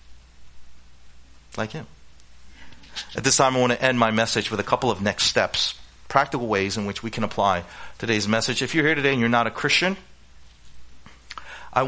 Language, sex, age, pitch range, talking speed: English, male, 40-59, 90-125 Hz, 180 wpm